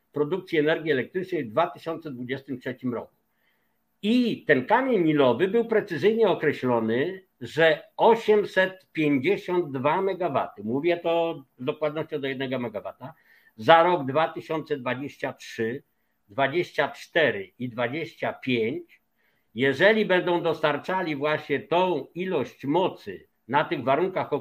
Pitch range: 150-200 Hz